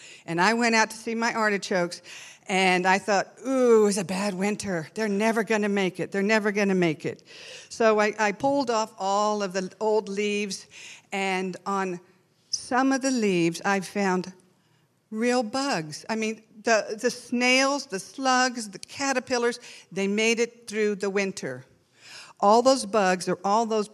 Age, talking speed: 50-69, 175 wpm